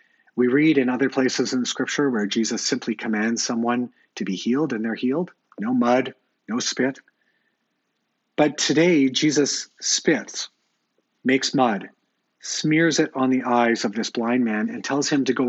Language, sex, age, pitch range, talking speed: English, male, 40-59, 120-160 Hz, 165 wpm